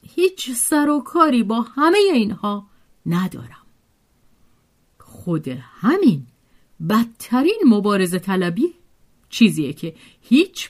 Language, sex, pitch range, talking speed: Persian, female, 175-290 Hz, 90 wpm